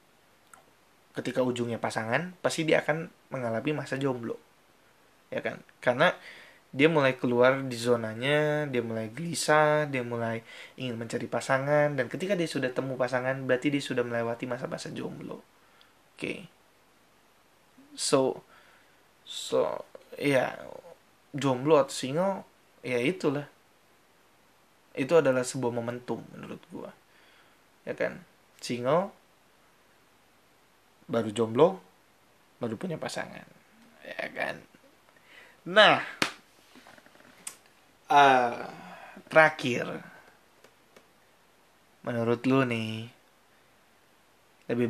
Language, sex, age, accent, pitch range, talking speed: Indonesian, male, 20-39, native, 120-150 Hz, 95 wpm